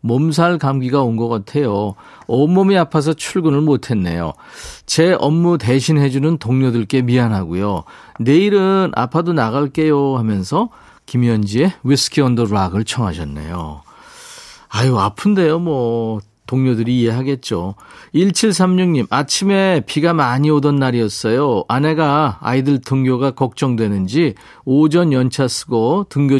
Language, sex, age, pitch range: Korean, male, 40-59, 115-165 Hz